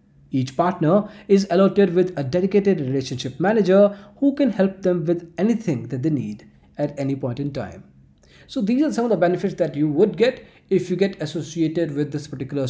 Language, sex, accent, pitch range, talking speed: English, male, Indian, 145-190 Hz, 195 wpm